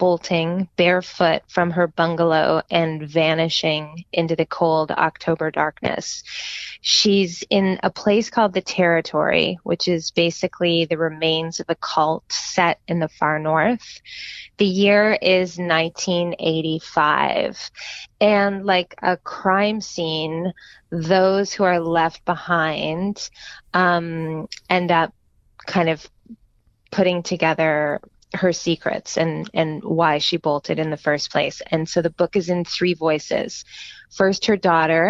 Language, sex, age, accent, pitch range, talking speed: English, female, 20-39, American, 160-185 Hz, 130 wpm